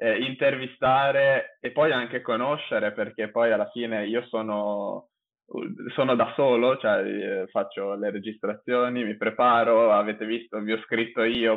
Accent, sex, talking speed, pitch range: native, male, 135 wpm, 110-125 Hz